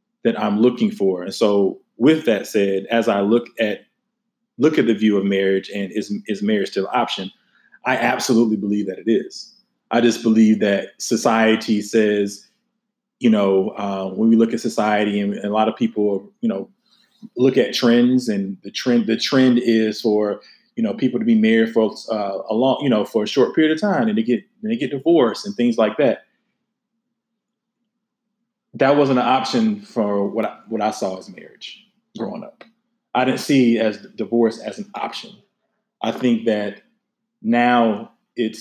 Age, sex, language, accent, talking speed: 20-39, male, English, American, 185 wpm